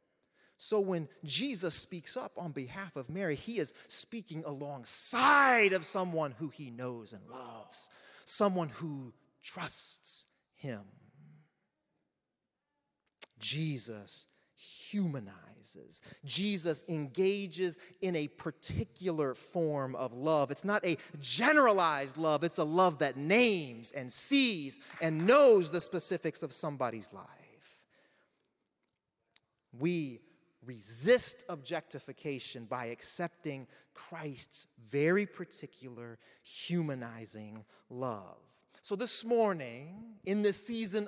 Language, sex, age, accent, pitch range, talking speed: English, male, 30-49, American, 140-210 Hz, 100 wpm